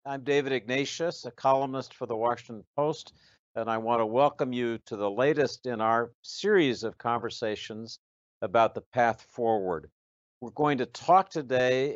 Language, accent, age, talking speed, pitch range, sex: English, American, 60-79, 160 wpm, 95-130 Hz, male